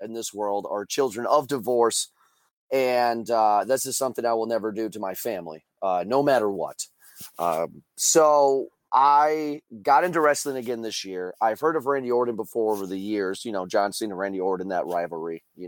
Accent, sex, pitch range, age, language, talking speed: American, male, 105-140 Hz, 30-49, English, 190 wpm